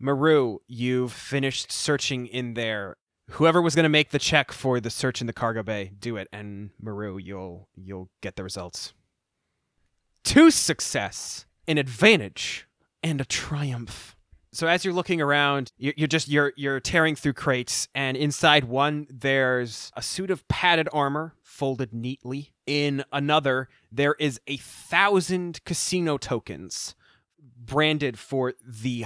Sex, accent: male, American